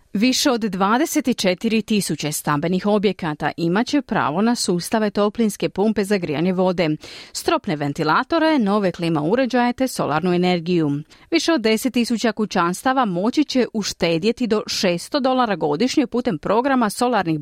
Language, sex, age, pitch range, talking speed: Croatian, female, 30-49, 180-255 Hz, 125 wpm